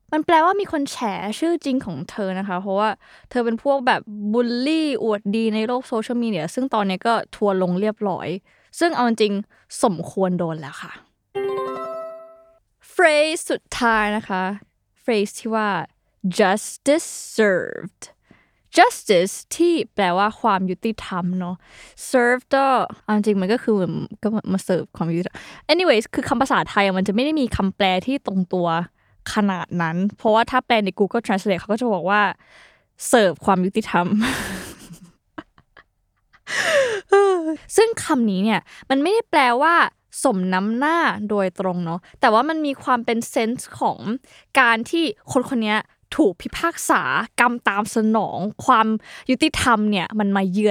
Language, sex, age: Thai, female, 20-39